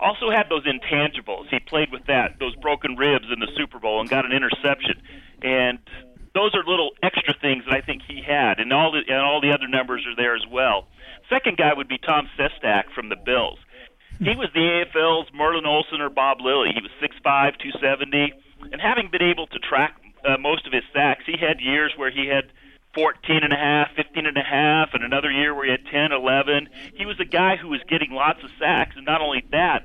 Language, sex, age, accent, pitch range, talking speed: English, male, 40-59, American, 135-155 Hz, 225 wpm